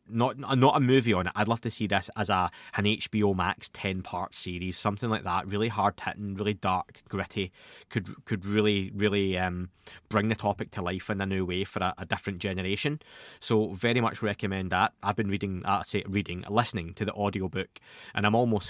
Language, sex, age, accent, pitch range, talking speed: English, male, 20-39, British, 95-110 Hz, 210 wpm